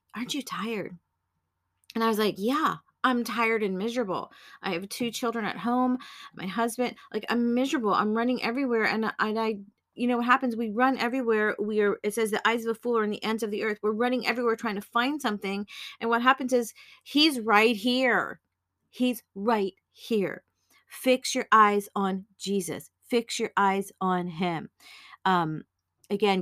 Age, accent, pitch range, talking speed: 40-59, American, 190-240 Hz, 185 wpm